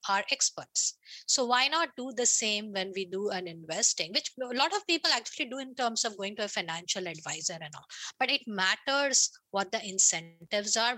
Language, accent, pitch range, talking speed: English, Indian, 180-245 Hz, 200 wpm